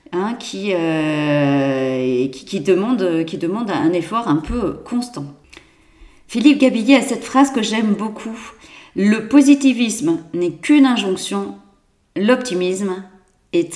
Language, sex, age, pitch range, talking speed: French, female, 40-59, 185-275 Hz, 105 wpm